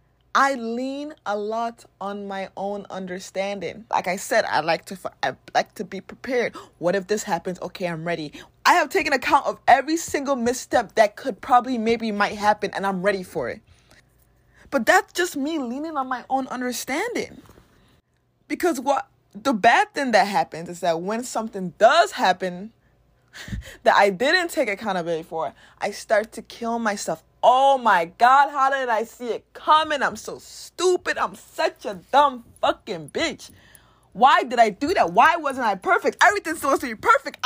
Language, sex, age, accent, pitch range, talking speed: English, female, 20-39, American, 200-310 Hz, 175 wpm